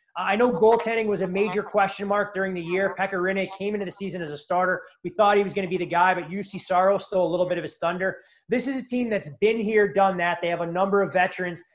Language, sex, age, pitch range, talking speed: English, male, 20-39, 175-210 Hz, 270 wpm